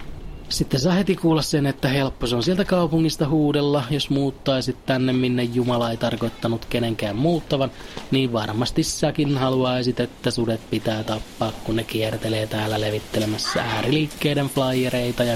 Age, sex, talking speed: 30-49, male, 145 wpm